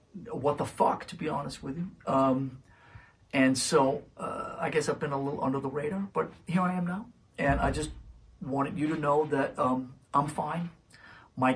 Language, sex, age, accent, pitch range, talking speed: English, male, 50-69, American, 130-150 Hz, 195 wpm